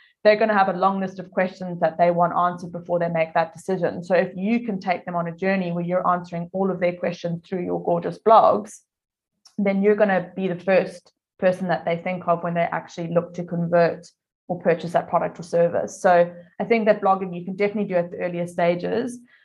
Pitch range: 170-205 Hz